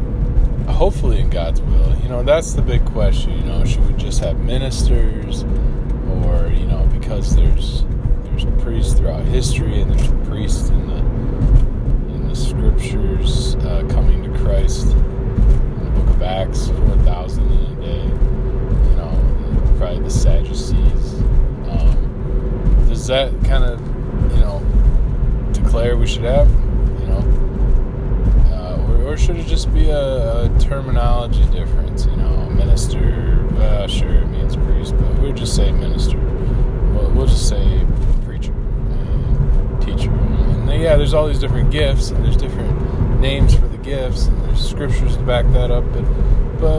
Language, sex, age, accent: English, male, 20-39, American